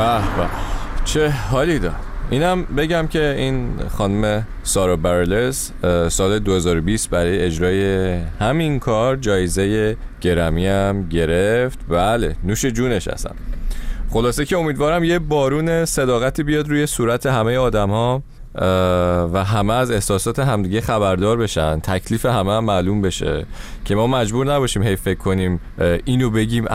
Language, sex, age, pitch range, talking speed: Persian, male, 30-49, 95-130 Hz, 130 wpm